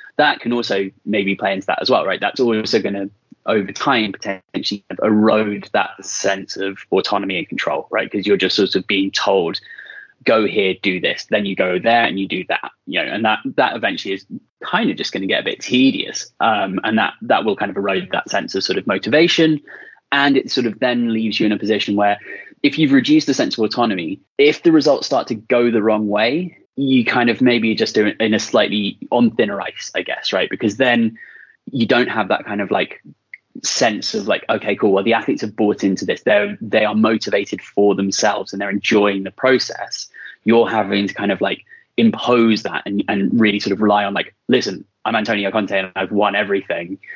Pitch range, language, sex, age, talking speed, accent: 100-130 Hz, English, male, 20-39, 220 wpm, British